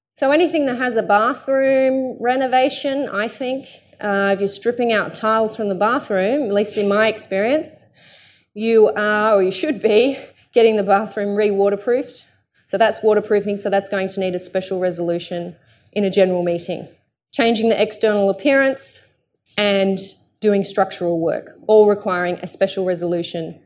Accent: Australian